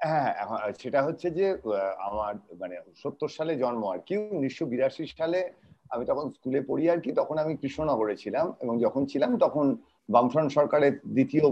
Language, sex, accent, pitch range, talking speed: Bengali, male, native, 130-185 Hz, 155 wpm